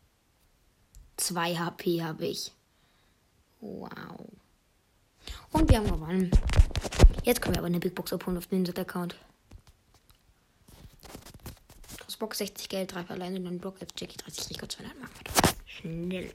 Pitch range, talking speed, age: 170-225 Hz, 130 wpm, 20-39